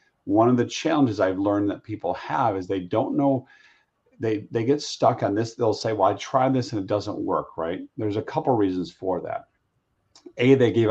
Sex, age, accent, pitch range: male, 40-59, American, 95-120 Hz